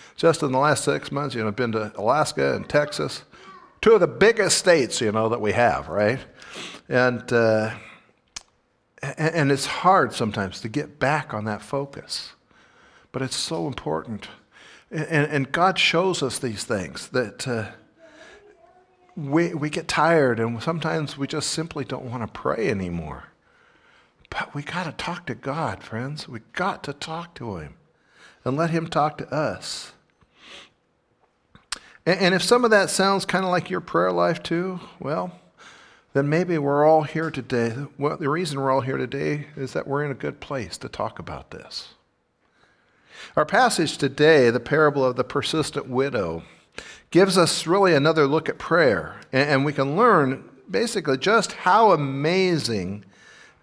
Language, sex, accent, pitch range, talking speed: English, male, American, 125-170 Hz, 165 wpm